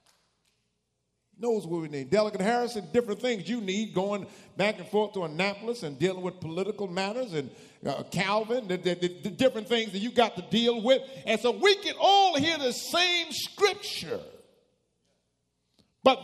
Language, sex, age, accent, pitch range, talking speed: English, male, 50-69, American, 180-290 Hz, 170 wpm